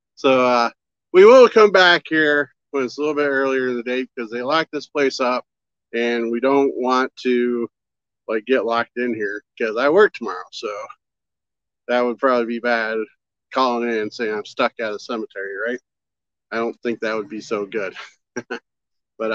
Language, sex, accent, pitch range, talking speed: English, male, American, 125-155 Hz, 190 wpm